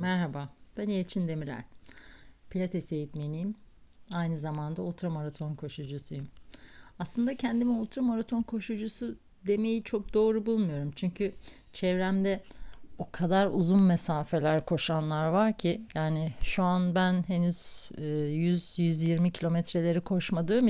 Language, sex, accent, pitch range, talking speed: Turkish, female, native, 160-195 Hz, 100 wpm